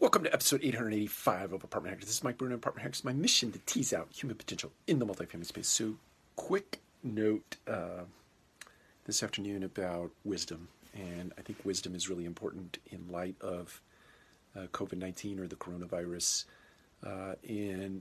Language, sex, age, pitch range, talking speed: English, male, 40-59, 90-100 Hz, 165 wpm